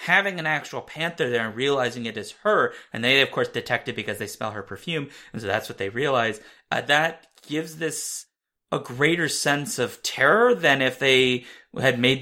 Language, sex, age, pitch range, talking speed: English, male, 30-49, 115-145 Hz, 200 wpm